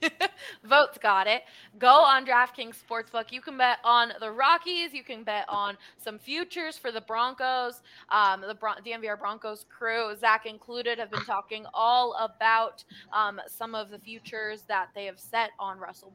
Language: English